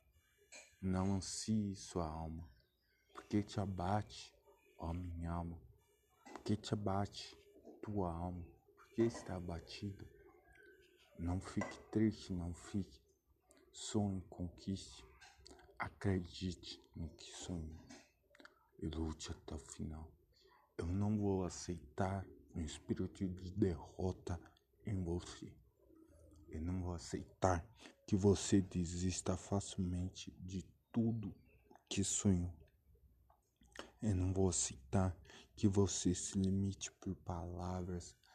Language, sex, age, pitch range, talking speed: Portuguese, male, 50-69, 85-100 Hz, 105 wpm